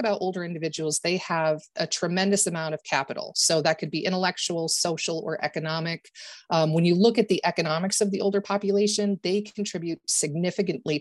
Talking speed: 175 wpm